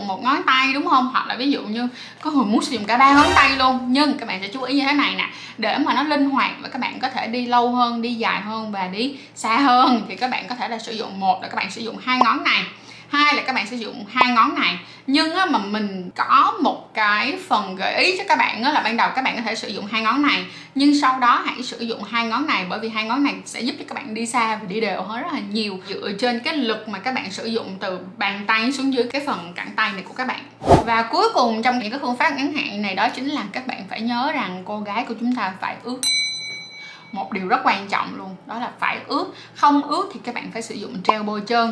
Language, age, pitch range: Vietnamese, 20-39, 220-275 Hz